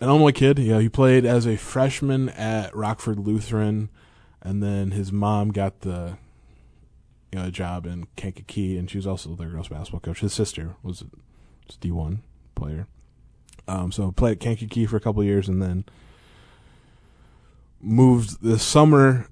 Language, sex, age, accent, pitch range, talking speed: English, male, 20-39, American, 90-110 Hz, 175 wpm